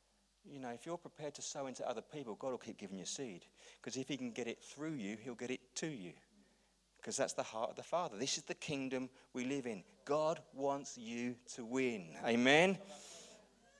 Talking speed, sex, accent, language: 215 wpm, male, British, English